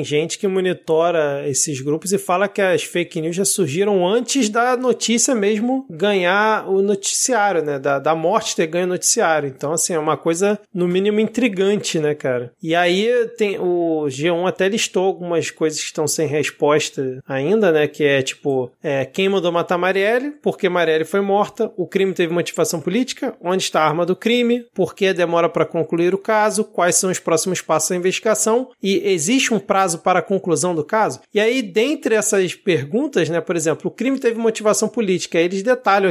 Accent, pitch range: Brazilian, 165-210 Hz